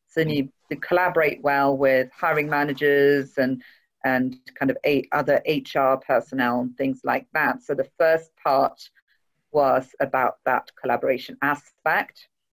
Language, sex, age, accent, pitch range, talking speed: English, female, 40-59, British, 140-165 Hz, 145 wpm